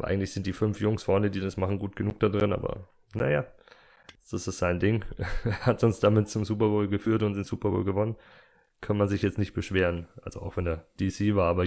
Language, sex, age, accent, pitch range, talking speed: German, male, 20-39, German, 90-105 Hz, 240 wpm